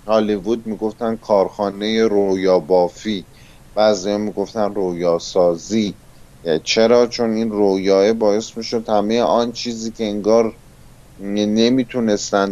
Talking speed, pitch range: 100 wpm, 95-115 Hz